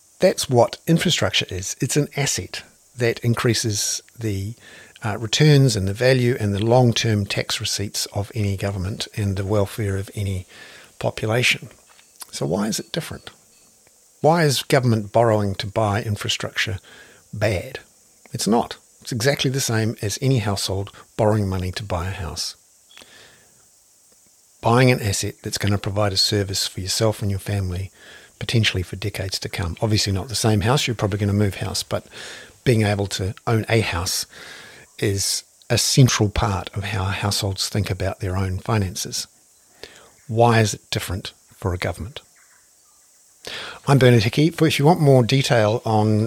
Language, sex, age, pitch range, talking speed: English, male, 60-79, 100-120 Hz, 160 wpm